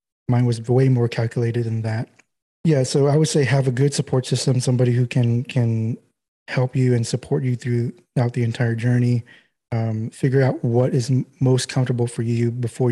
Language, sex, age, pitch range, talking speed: English, male, 20-39, 120-135 Hz, 190 wpm